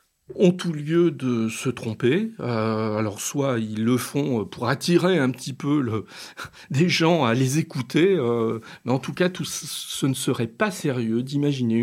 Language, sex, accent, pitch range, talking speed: French, male, French, 120-175 Hz, 165 wpm